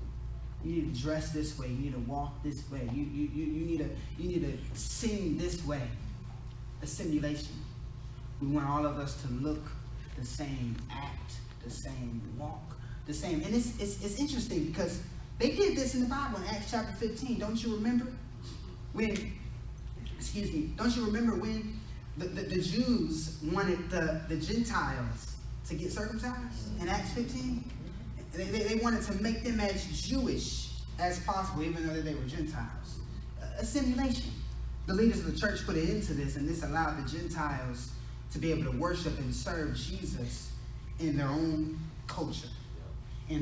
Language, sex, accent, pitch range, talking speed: English, male, American, 125-185 Hz, 175 wpm